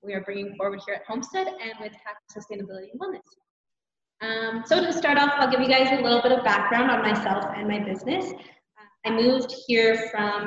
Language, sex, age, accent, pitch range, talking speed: English, female, 20-39, American, 200-245 Hz, 210 wpm